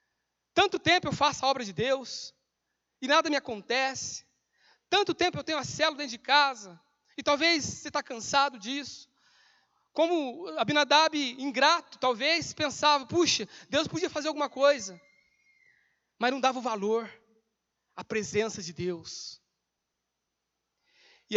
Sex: male